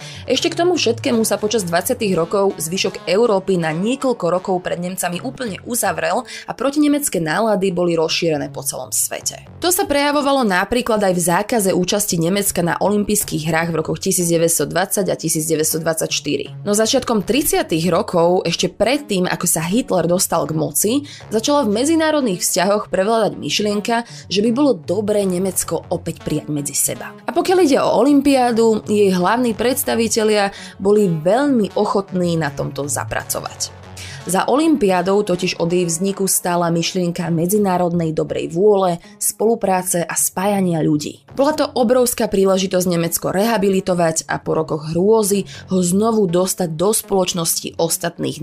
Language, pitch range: Slovak, 170-220 Hz